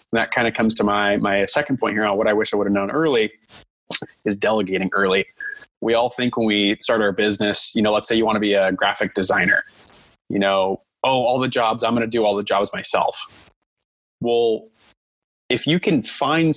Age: 20-39